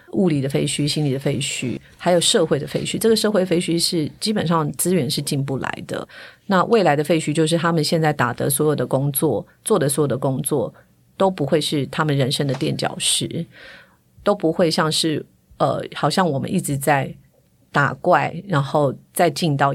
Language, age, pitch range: Chinese, 30-49, 145-170 Hz